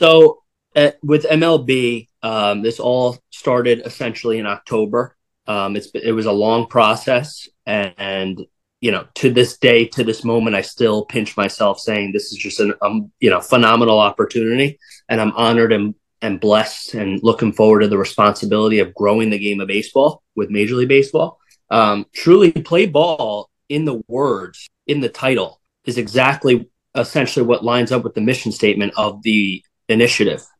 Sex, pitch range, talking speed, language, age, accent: male, 110-130 Hz, 165 wpm, English, 30-49, American